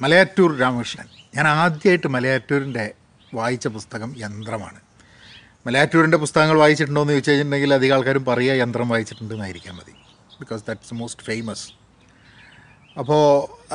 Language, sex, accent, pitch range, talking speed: Malayalam, male, native, 115-150 Hz, 125 wpm